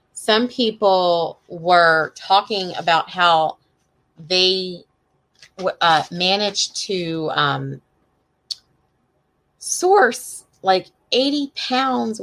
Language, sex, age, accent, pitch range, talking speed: English, female, 30-49, American, 170-255 Hz, 75 wpm